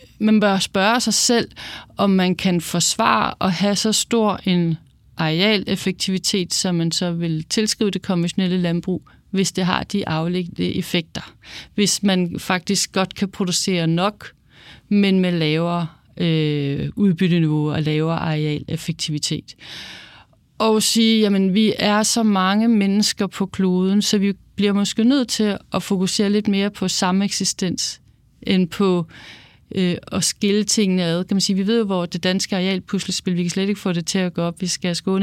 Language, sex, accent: Danish, female, native